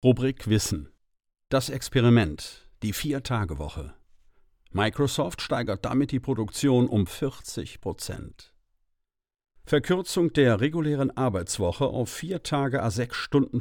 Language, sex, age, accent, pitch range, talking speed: German, male, 50-69, German, 105-130 Hz, 110 wpm